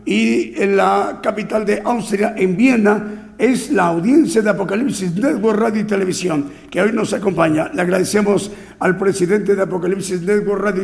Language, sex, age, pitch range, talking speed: Spanish, male, 50-69, 195-220 Hz, 160 wpm